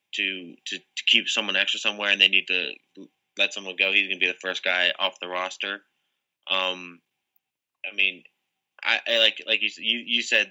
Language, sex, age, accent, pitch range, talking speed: English, male, 20-39, American, 95-110 Hz, 195 wpm